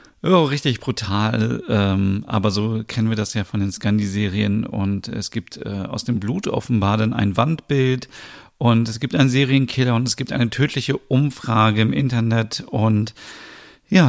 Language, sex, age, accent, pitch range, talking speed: German, male, 40-59, German, 105-130 Hz, 165 wpm